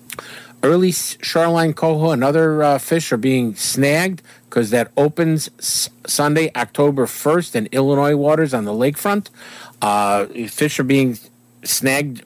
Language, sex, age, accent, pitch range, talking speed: English, male, 50-69, American, 120-155 Hz, 130 wpm